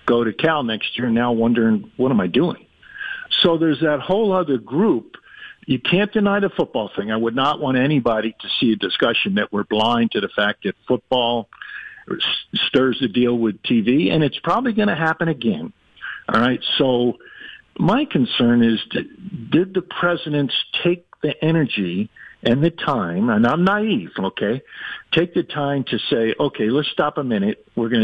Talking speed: 180 wpm